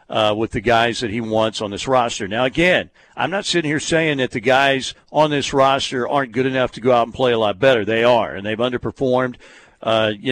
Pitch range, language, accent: 110-145 Hz, English, American